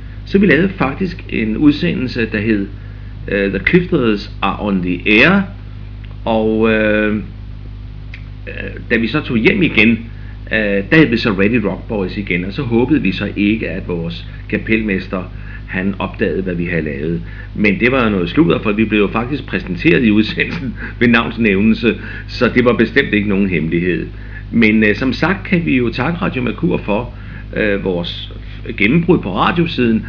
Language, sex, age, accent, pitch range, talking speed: Danish, male, 60-79, native, 100-115 Hz, 175 wpm